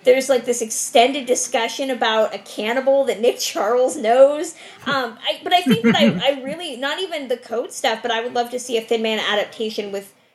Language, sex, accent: English, female, American